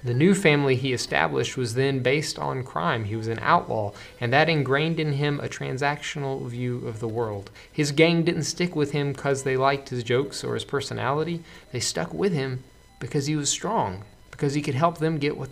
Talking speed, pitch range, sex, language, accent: 210 wpm, 115-145 Hz, male, English, American